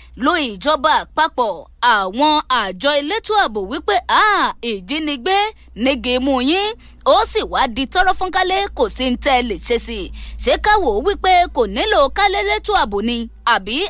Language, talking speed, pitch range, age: English, 130 wpm, 265-390 Hz, 20-39